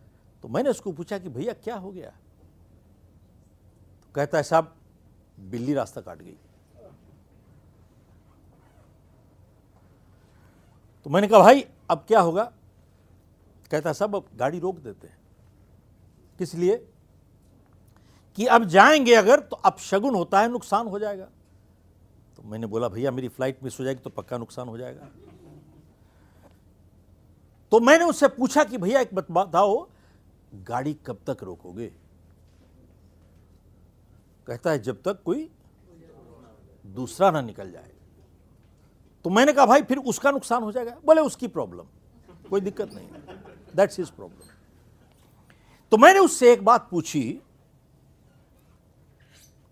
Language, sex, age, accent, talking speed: Hindi, male, 60-79, native, 125 wpm